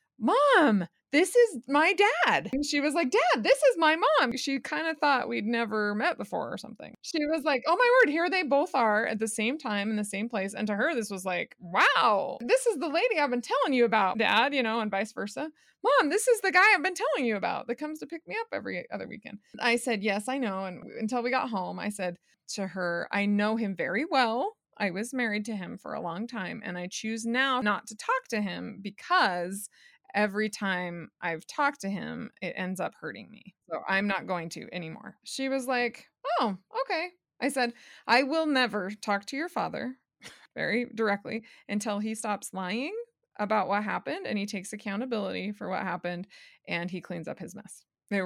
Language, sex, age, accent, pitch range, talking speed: English, female, 20-39, American, 195-270 Hz, 220 wpm